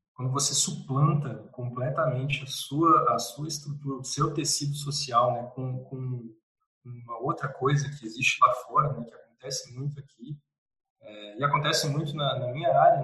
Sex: male